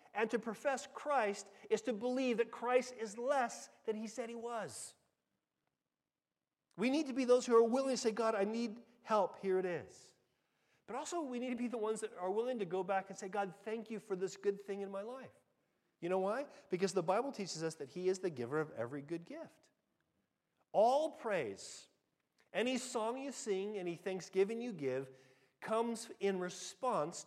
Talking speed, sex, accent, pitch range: 195 wpm, male, American, 145-235 Hz